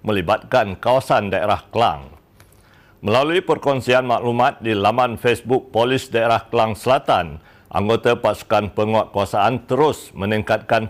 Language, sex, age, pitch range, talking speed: Malay, male, 60-79, 100-120 Hz, 105 wpm